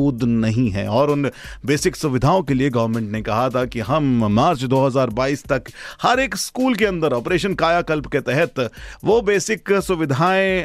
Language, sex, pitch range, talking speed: Hindi, male, 120-165 Hz, 165 wpm